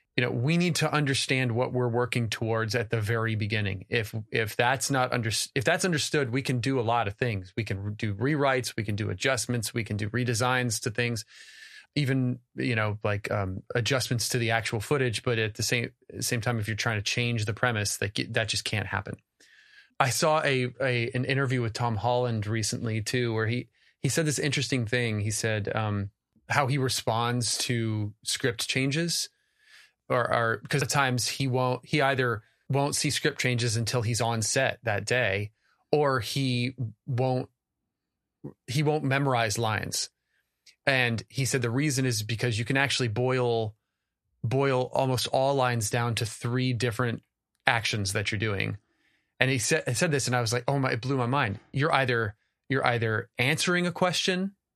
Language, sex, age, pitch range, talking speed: English, male, 30-49, 115-135 Hz, 185 wpm